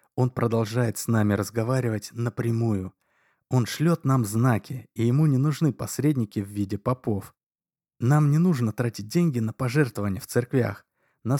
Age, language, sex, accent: 20-39, Russian, male, native